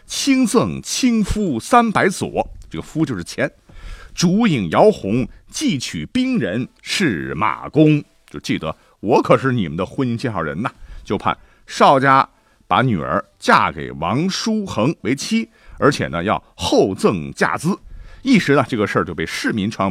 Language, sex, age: Chinese, male, 50-69